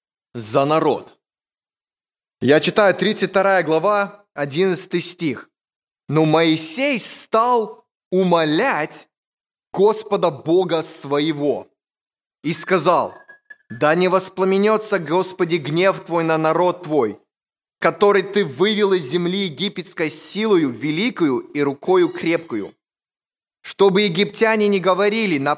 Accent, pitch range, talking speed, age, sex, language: native, 155-205 Hz, 100 wpm, 20-39, male, Russian